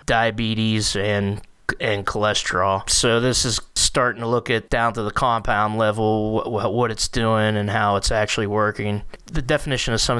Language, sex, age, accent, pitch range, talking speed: English, male, 20-39, American, 115-140 Hz, 170 wpm